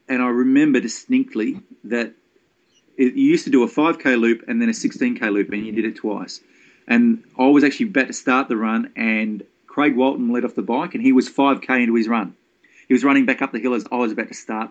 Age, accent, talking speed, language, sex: 30-49, Australian, 235 wpm, English, male